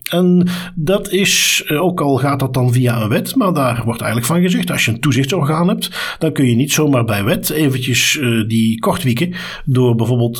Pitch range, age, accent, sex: 120-155 Hz, 50-69, Dutch, male